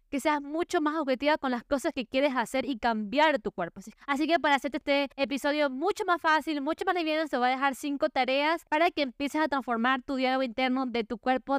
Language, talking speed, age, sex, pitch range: Spanish, 230 wpm, 20-39, female, 245-295 Hz